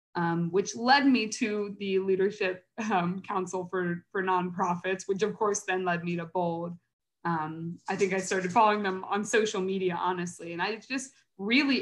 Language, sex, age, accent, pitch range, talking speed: English, female, 20-39, American, 180-215 Hz, 185 wpm